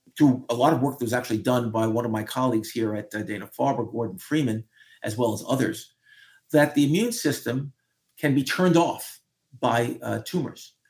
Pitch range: 115-145 Hz